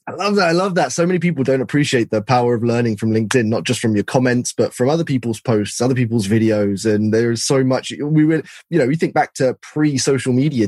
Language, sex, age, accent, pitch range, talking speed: English, male, 10-29, British, 115-150 Hz, 255 wpm